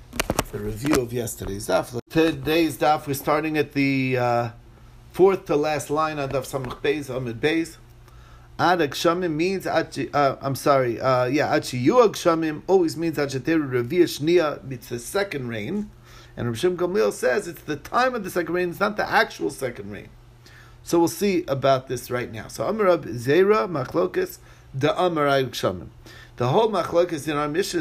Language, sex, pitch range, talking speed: English, male, 120-170 Hz, 160 wpm